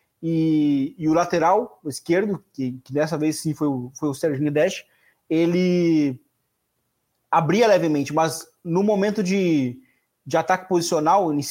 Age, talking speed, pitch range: 20-39, 145 wpm, 150-190 Hz